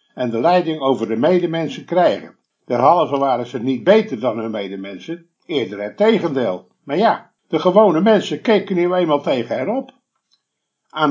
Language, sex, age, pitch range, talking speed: Dutch, male, 50-69, 140-205 Hz, 160 wpm